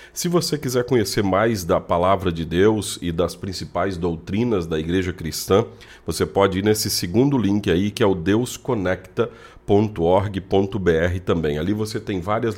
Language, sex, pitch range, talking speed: Portuguese, male, 90-105 Hz, 155 wpm